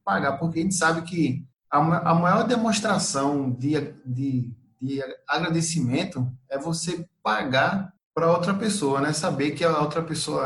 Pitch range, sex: 130-170 Hz, male